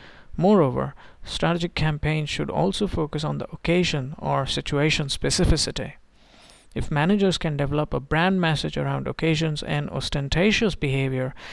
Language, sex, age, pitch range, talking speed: English, male, 50-69, 130-160 Hz, 125 wpm